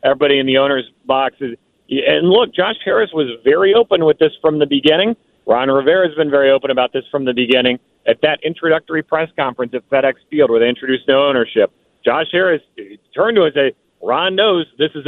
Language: English